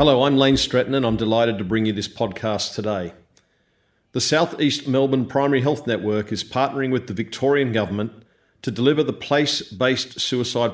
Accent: Australian